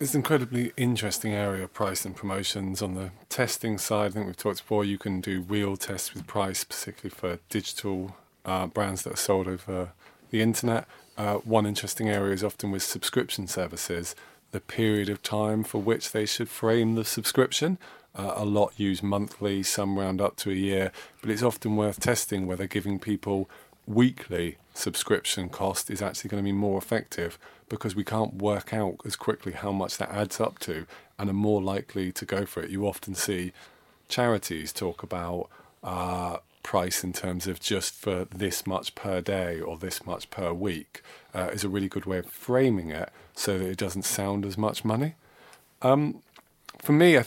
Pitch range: 95-110 Hz